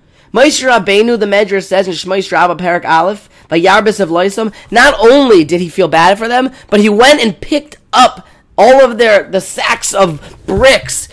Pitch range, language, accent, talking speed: 155-235 Hz, English, American, 185 wpm